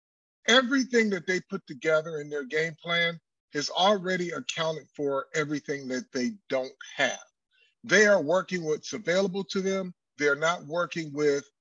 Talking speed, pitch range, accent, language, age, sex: 150 wpm, 160-205 Hz, American, English, 40-59, male